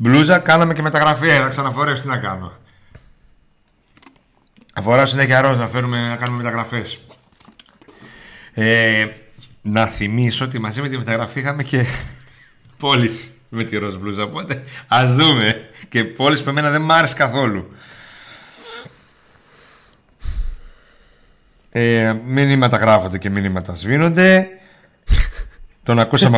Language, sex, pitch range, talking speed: Greek, male, 110-145 Hz, 120 wpm